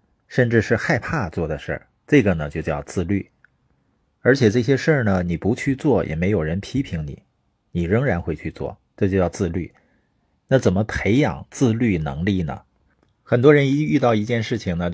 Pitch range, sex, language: 95-130 Hz, male, Chinese